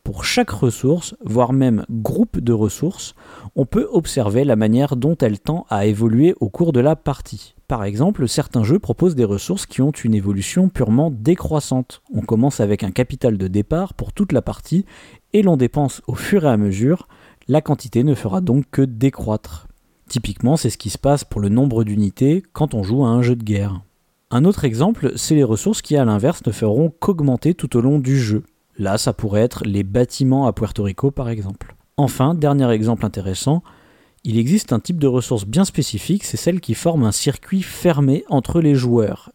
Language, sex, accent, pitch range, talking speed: French, male, French, 110-145 Hz, 200 wpm